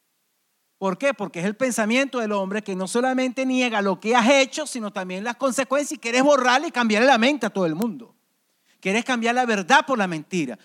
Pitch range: 195-250 Hz